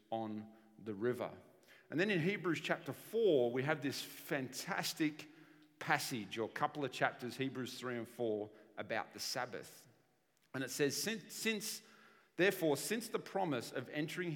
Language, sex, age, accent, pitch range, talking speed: English, male, 40-59, Australian, 110-150 Hz, 155 wpm